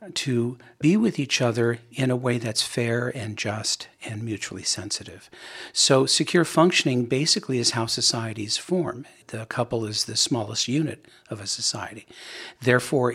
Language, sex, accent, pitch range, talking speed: English, male, American, 110-140 Hz, 150 wpm